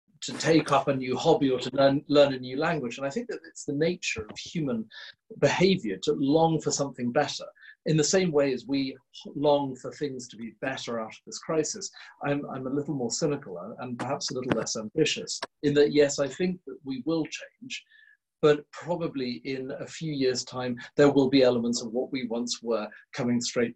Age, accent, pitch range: 40-59, British, 125-160 Hz